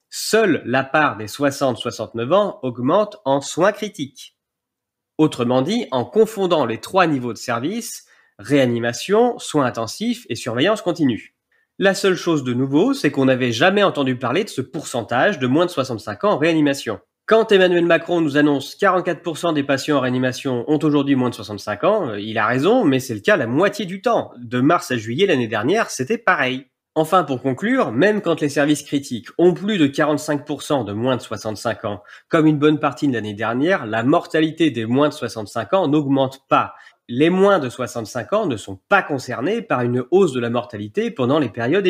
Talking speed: 190 wpm